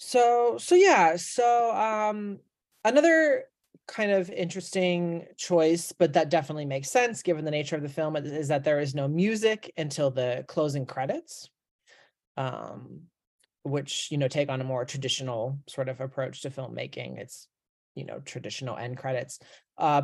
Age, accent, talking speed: 30-49, American, 155 wpm